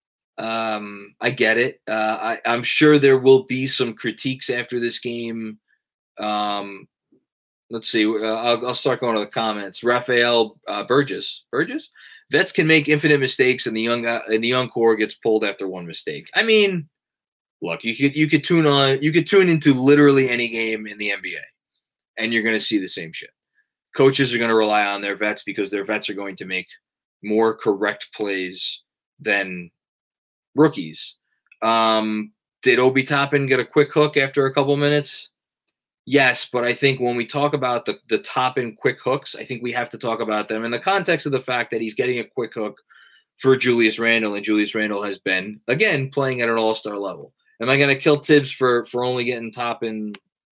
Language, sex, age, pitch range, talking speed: English, male, 20-39, 110-135 Hz, 200 wpm